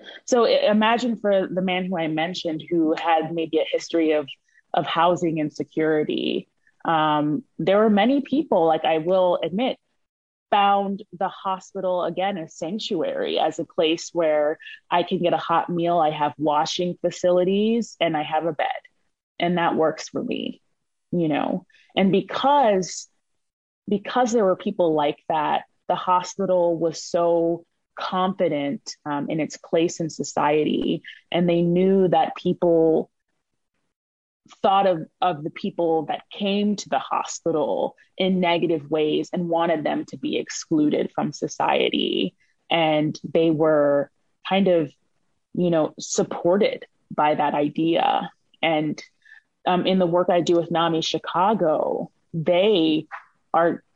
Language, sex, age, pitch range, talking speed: English, female, 20-39, 160-190 Hz, 140 wpm